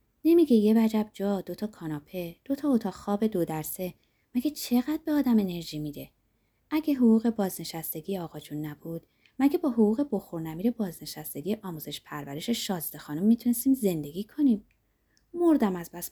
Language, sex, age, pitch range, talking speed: Persian, female, 20-39, 160-230 Hz, 155 wpm